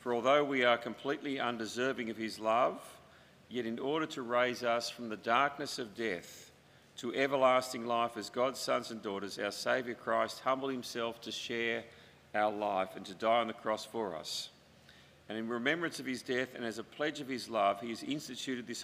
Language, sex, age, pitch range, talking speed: English, male, 50-69, 110-130 Hz, 200 wpm